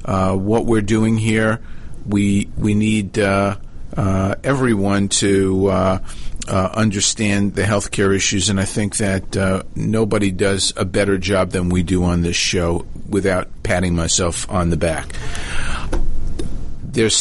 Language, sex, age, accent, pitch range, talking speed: English, male, 50-69, American, 90-105 Hz, 145 wpm